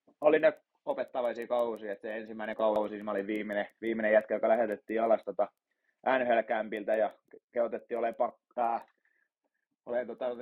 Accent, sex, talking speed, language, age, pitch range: native, male, 130 wpm, Finnish, 20-39, 110-135 Hz